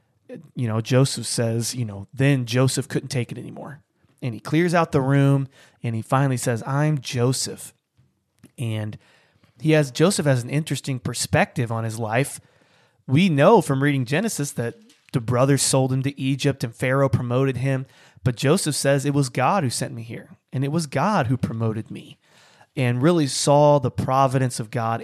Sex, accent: male, American